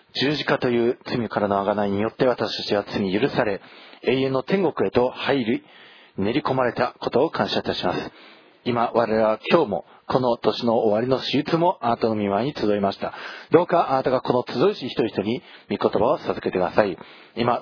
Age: 40-59